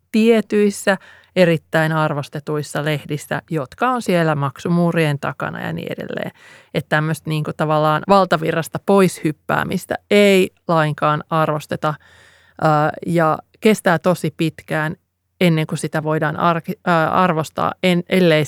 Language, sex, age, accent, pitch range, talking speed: Finnish, male, 30-49, native, 155-190 Hz, 105 wpm